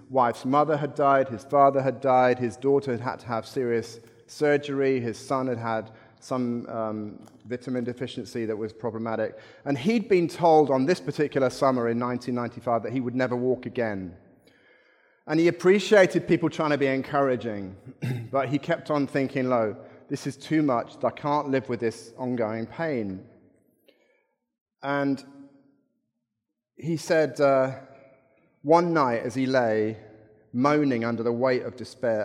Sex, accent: male, British